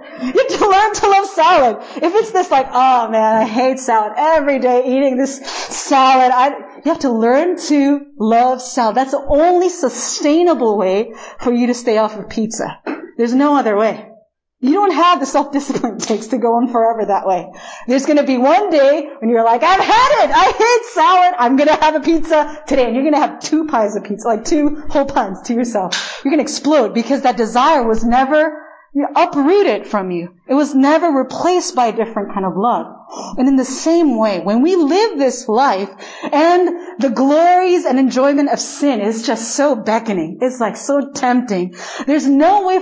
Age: 40-59